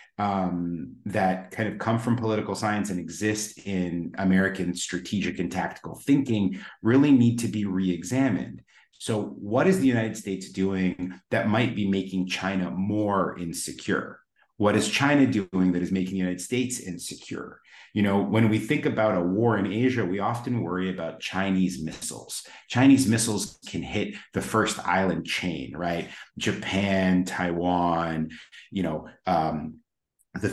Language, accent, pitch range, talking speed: English, American, 90-110 Hz, 150 wpm